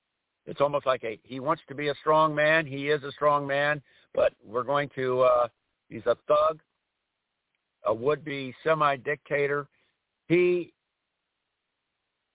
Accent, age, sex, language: American, 60-79, male, English